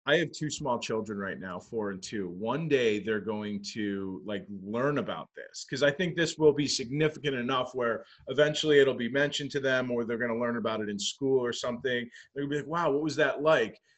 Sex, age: male, 30-49